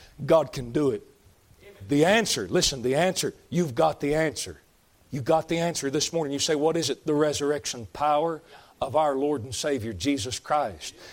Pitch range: 145-210 Hz